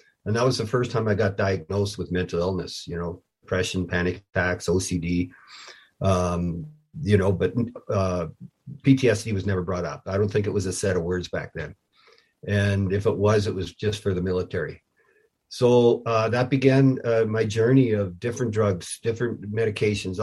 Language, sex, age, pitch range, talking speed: English, male, 50-69, 95-115 Hz, 180 wpm